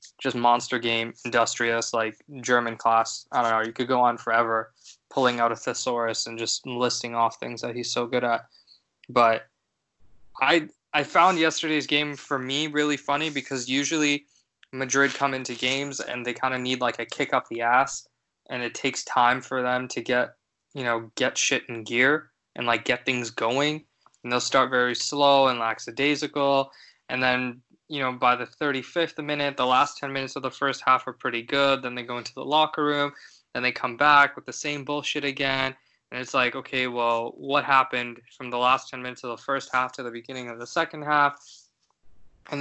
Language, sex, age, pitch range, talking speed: English, male, 20-39, 120-145 Hz, 200 wpm